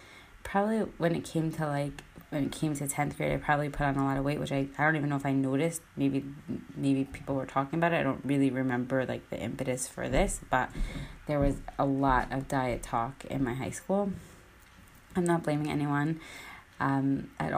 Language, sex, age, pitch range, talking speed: English, female, 20-39, 135-150 Hz, 215 wpm